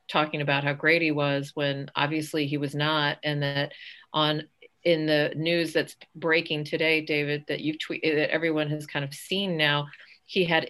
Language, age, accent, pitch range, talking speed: English, 40-59, American, 150-175 Hz, 185 wpm